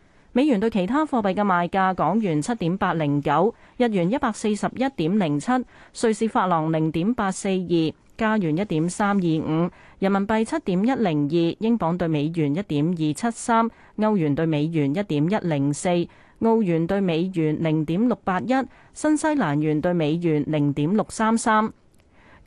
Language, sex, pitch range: Chinese, female, 165-230 Hz